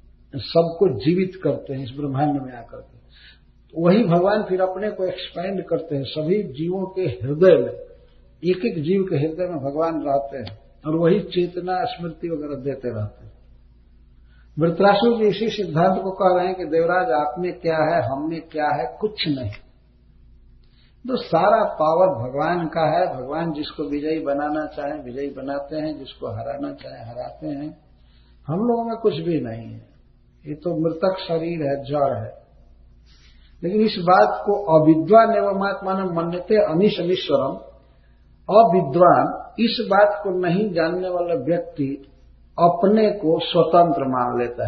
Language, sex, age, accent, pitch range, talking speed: Hindi, male, 60-79, native, 135-185 Hz, 150 wpm